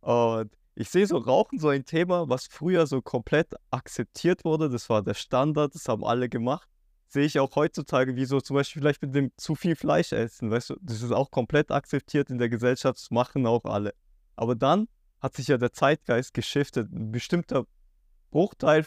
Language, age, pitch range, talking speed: German, 20-39, 120-150 Hz, 195 wpm